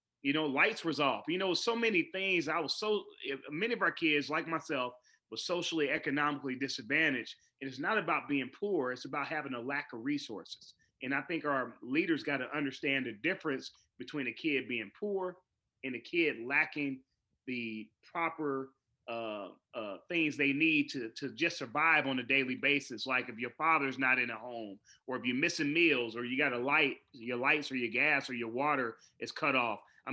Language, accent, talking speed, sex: English, American, 200 wpm, male